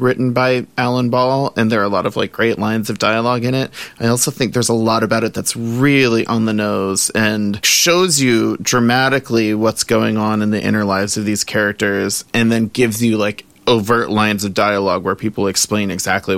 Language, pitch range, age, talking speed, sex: English, 110-125 Hz, 30-49, 210 wpm, male